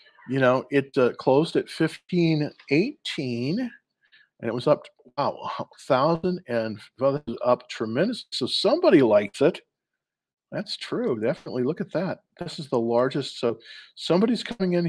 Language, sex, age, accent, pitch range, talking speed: English, male, 40-59, American, 125-185 Hz, 145 wpm